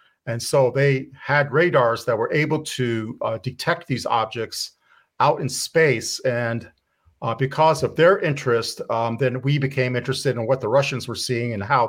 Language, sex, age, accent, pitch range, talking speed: English, male, 50-69, American, 120-145 Hz, 175 wpm